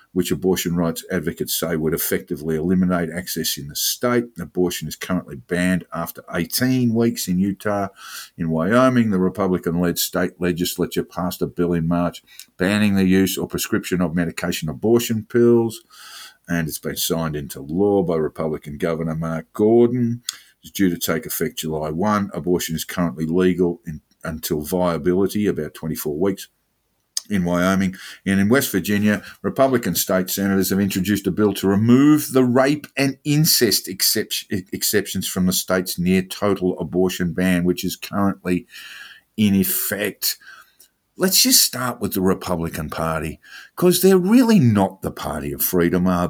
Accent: Australian